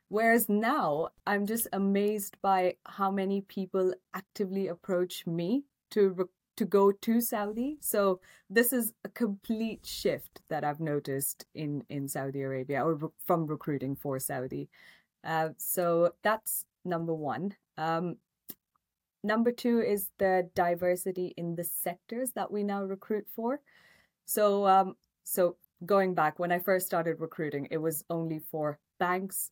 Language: English